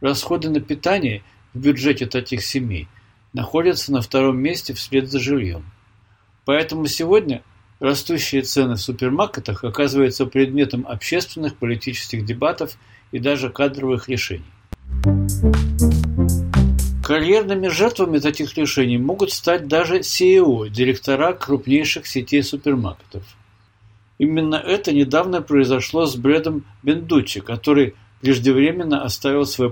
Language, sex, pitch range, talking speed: Russian, male, 105-145 Hz, 105 wpm